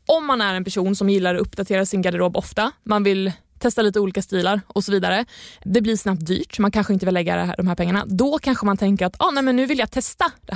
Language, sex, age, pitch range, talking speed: Swedish, female, 20-39, 185-220 Hz, 260 wpm